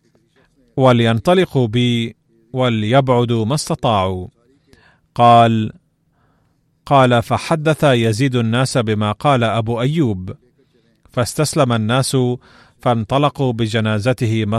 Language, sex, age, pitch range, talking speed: Arabic, male, 30-49, 110-135 Hz, 80 wpm